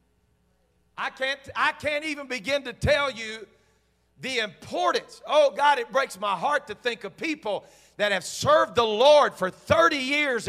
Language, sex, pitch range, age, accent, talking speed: English, male, 175-285 Hz, 50-69, American, 165 wpm